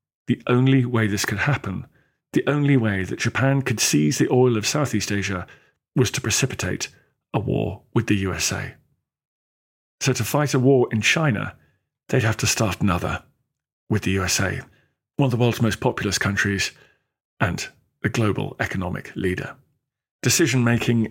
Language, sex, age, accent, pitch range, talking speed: English, male, 40-59, British, 100-125 Hz, 155 wpm